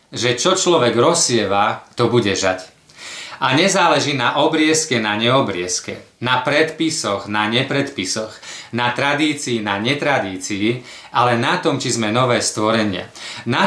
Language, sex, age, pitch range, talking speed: Slovak, male, 40-59, 110-150 Hz, 125 wpm